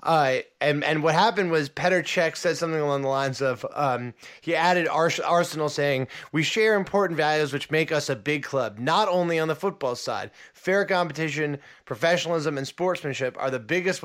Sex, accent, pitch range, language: male, American, 140-180 Hz, English